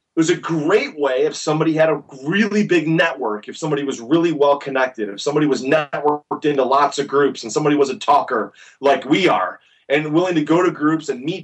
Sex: male